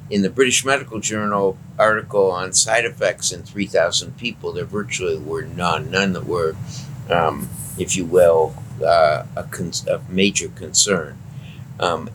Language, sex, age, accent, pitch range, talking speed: English, male, 50-69, American, 95-135 Hz, 145 wpm